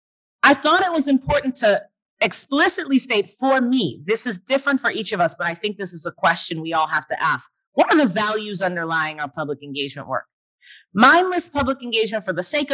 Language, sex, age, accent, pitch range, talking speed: English, female, 30-49, American, 175-240 Hz, 205 wpm